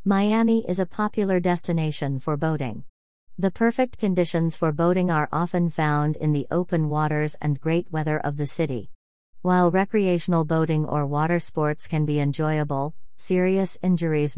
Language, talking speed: English, 150 wpm